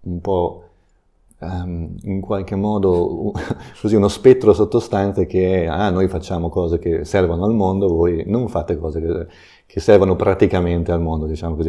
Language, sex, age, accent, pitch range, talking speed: Italian, male, 30-49, native, 85-100 Hz, 155 wpm